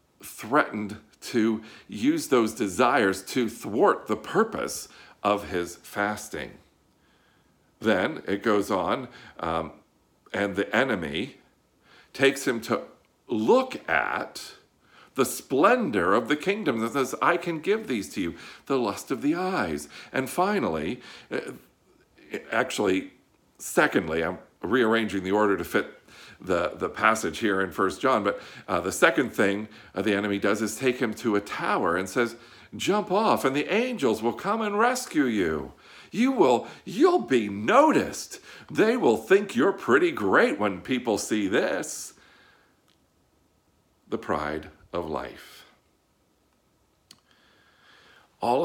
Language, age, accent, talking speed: English, 50-69, American, 130 wpm